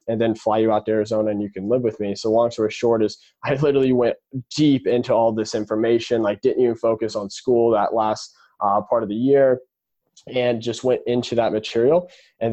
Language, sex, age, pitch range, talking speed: English, male, 20-39, 110-125 Hz, 220 wpm